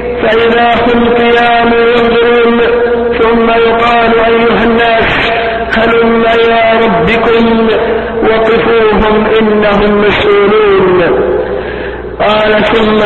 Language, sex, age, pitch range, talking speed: Arabic, male, 50-69, 215-230 Hz, 75 wpm